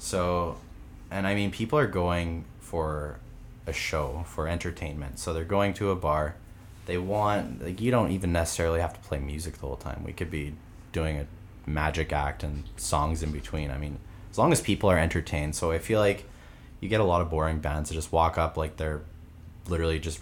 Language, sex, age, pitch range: English, male, 20-39, 75-90 Hz